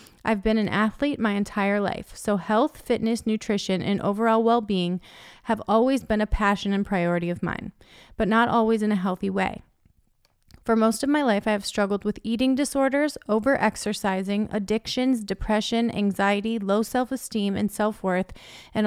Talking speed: 160 wpm